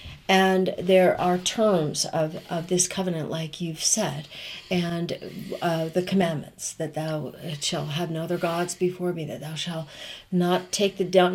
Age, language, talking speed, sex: 40-59, English, 150 wpm, female